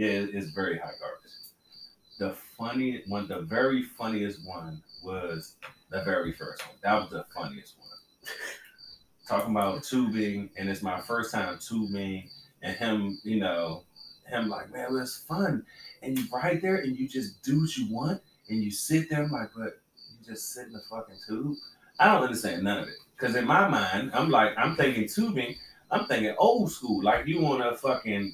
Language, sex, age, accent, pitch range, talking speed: English, male, 30-49, American, 110-170 Hz, 190 wpm